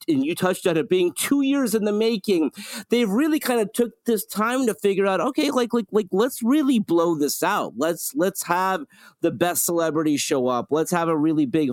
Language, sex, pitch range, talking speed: English, male, 155-210 Hz, 220 wpm